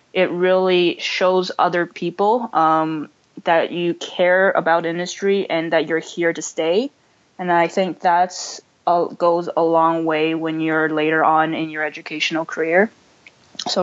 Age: 20-39